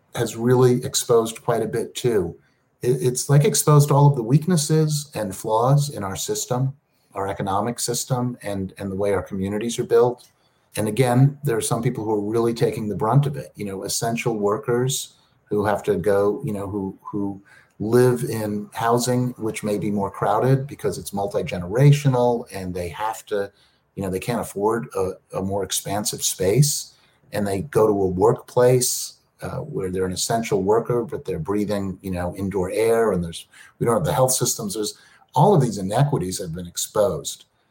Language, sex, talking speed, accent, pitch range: English, male, 190 wpm, American, 105-140 Hz